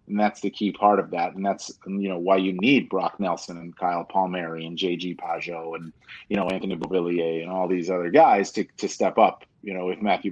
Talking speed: 235 wpm